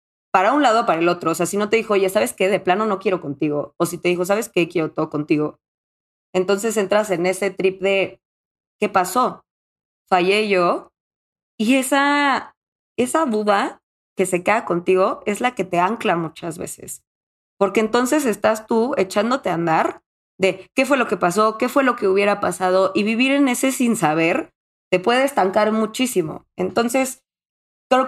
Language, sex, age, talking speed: Spanish, female, 20-39, 180 wpm